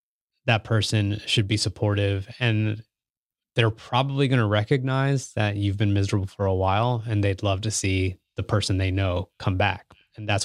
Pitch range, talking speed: 100-120 Hz, 180 wpm